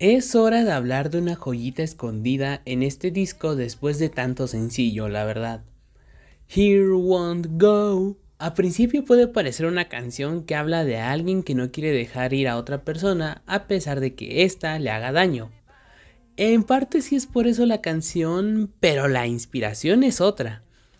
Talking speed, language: 170 wpm, Spanish